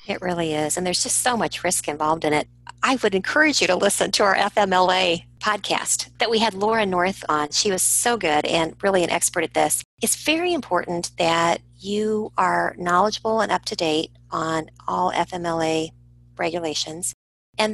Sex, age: female, 50-69